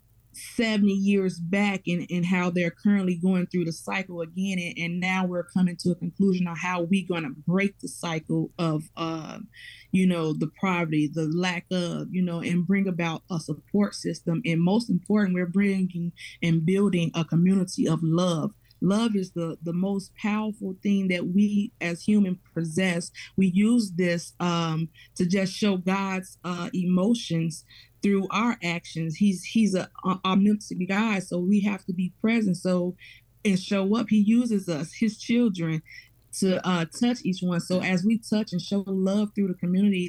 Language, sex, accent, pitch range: English, female, American, 170-200 Hz